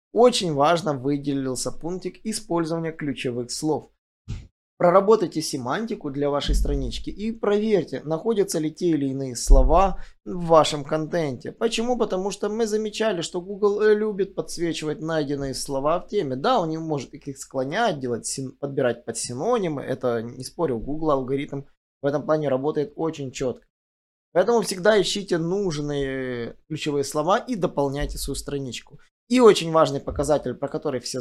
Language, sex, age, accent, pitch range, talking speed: Russian, male, 20-39, native, 140-195 Hz, 140 wpm